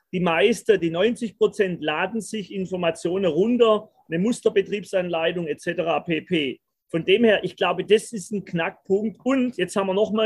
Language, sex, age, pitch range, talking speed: German, male, 40-59, 180-215 Hz, 160 wpm